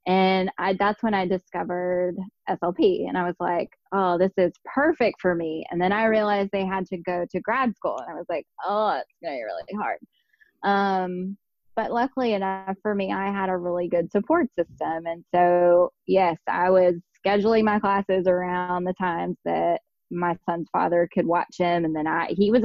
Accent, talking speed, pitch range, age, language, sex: American, 195 wpm, 175-205 Hz, 20-39, English, female